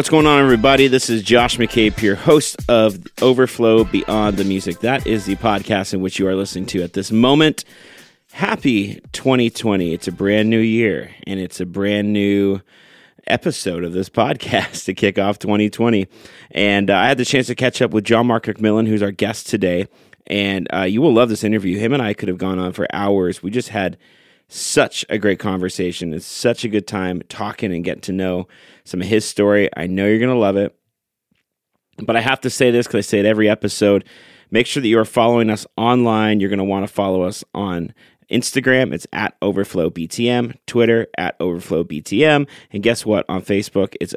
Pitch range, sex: 95-120 Hz, male